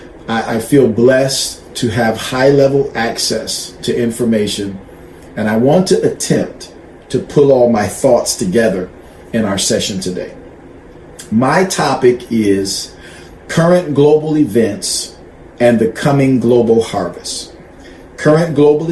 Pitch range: 110-135 Hz